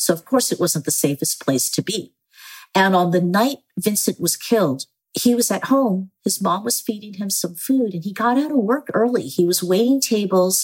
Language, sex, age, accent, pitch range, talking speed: English, female, 50-69, American, 175-250 Hz, 220 wpm